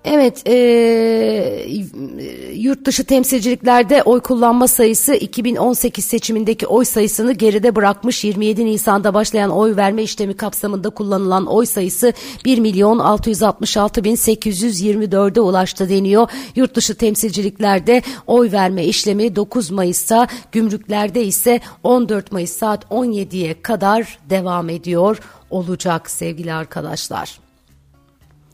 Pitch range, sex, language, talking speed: 180-230 Hz, female, Turkish, 100 wpm